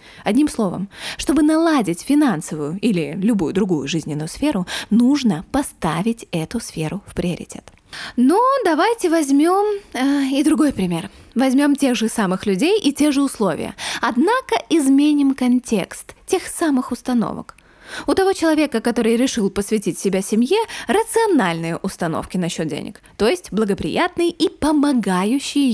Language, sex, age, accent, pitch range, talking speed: Russian, female, 20-39, native, 205-290 Hz, 130 wpm